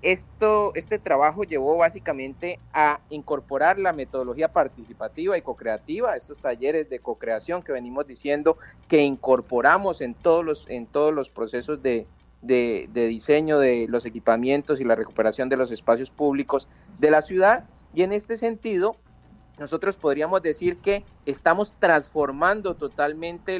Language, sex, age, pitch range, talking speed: Spanish, male, 40-59, 135-175 Hz, 140 wpm